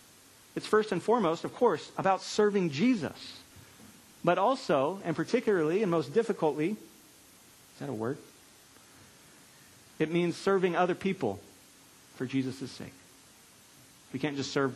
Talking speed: 130 wpm